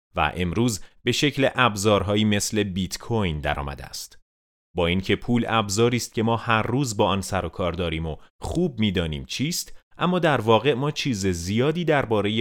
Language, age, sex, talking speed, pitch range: Persian, 30-49, male, 180 wpm, 90-120 Hz